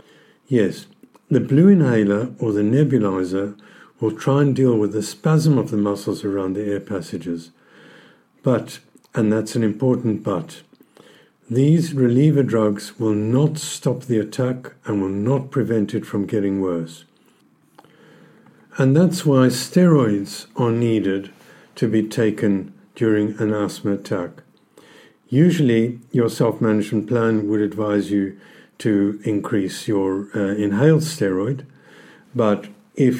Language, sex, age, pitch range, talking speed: English, male, 50-69, 100-130 Hz, 130 wpm